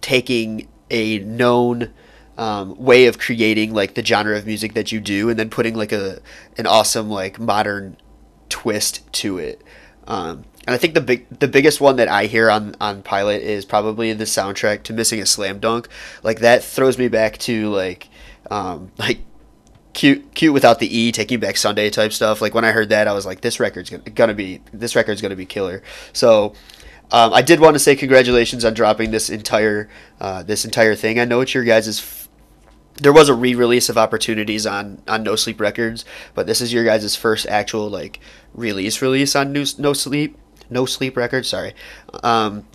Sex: male